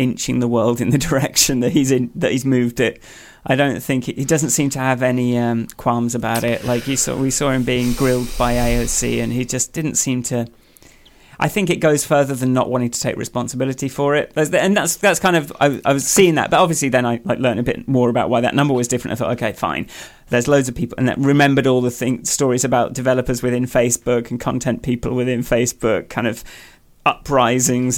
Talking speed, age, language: 230 wpm, 30-49, English